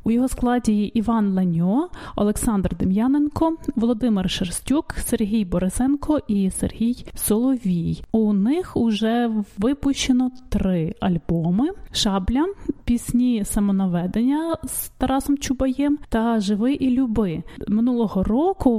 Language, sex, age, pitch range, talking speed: English, female, 20-39, 205-265 Hz, 105 wpm